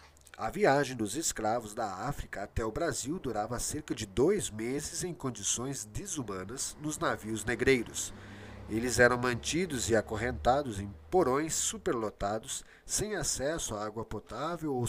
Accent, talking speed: Brazilian, 135 wpm